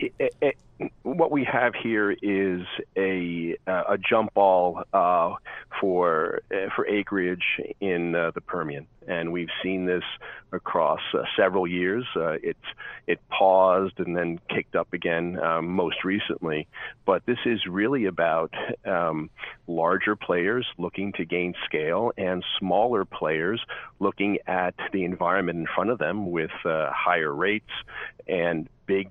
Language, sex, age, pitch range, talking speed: English, male, 40-59, 90-105 Hz, 145 wpm